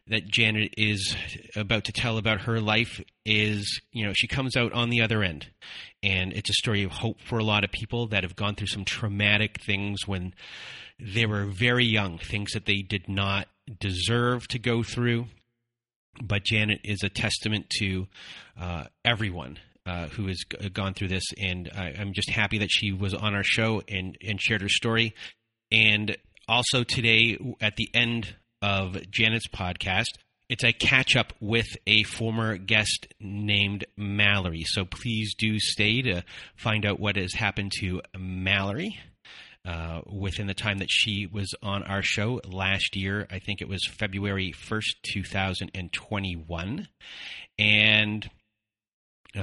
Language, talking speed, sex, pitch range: English, 160 wpm, male, 100-115 Hz